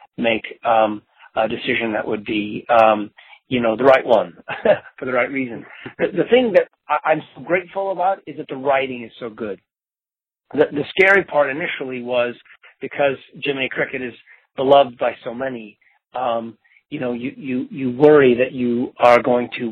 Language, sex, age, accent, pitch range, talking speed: English, male, 40-59, American, 115-135 Hz, 175 wpm